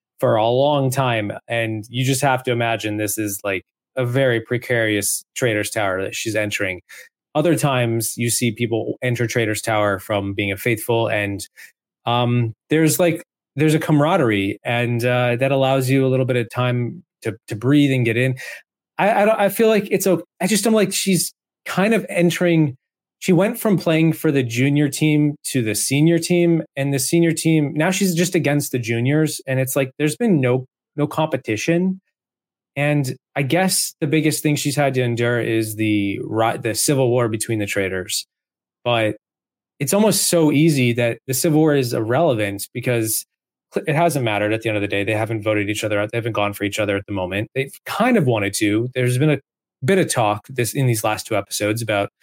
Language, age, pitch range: English, 20-39, 110-155 Hz